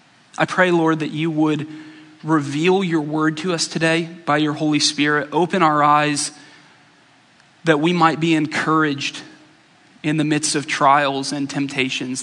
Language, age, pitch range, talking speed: English, 20-39, 150-180 Hz, 150 wpm